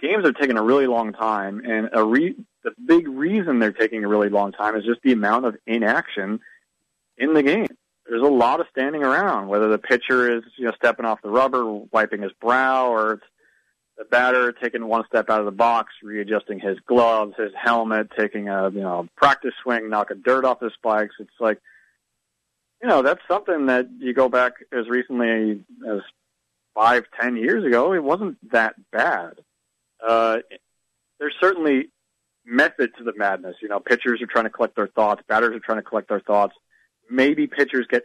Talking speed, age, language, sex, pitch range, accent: 190 wpm, 30-49, English, male, 105-125 Hz, American